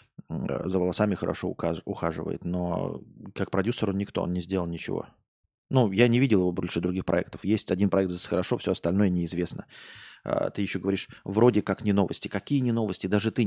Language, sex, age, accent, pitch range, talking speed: Russian, male, 20-39, native, 90-110 Hz, 180 wpm